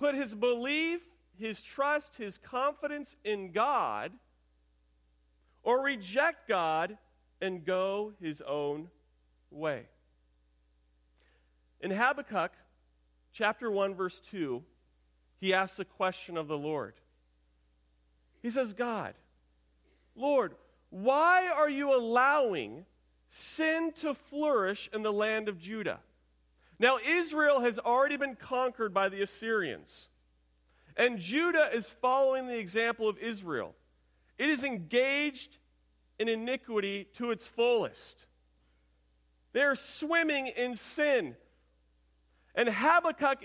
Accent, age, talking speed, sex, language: American, 40-59, 110 wpm, male, English